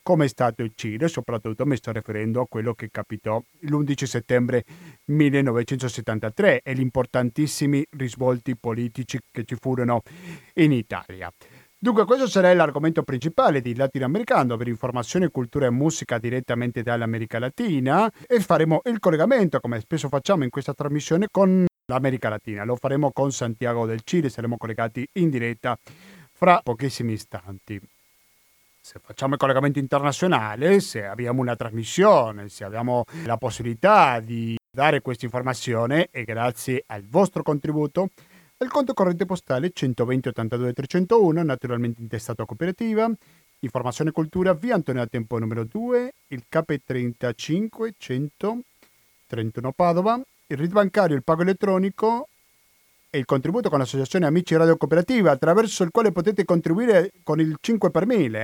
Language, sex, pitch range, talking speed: Italian, male, 120-175 Hz, 140 wpm